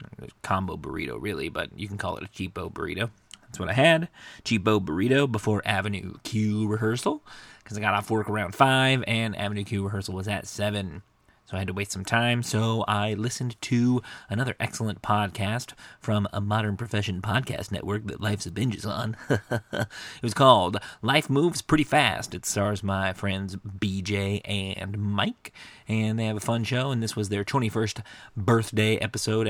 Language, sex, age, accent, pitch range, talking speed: English, male, 30-49, American, 100-115 Hz, 175 wpm